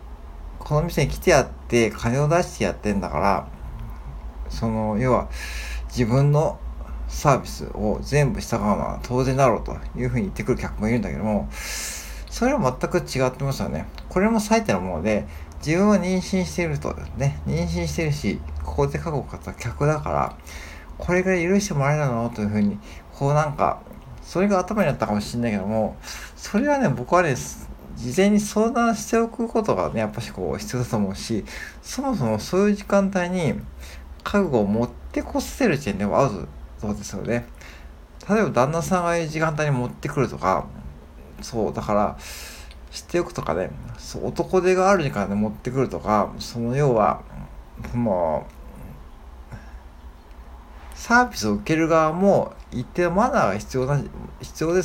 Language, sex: Japanese, male